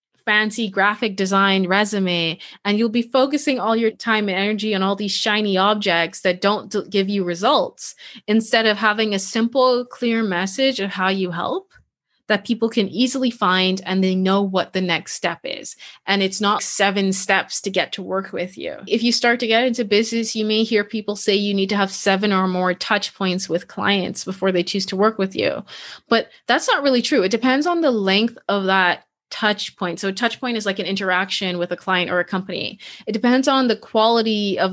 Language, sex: English, female